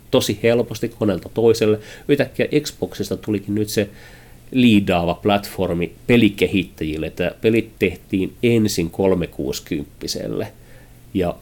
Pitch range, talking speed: 105-145 Hz, 95 wpm